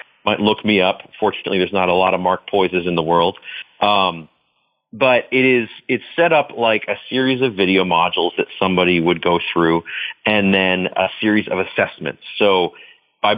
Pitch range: 95-115 Hz